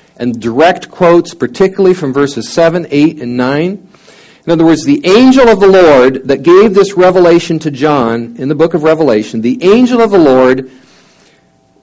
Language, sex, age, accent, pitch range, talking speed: English, male, 50-69, American, 125-180 Hz, 170 wpm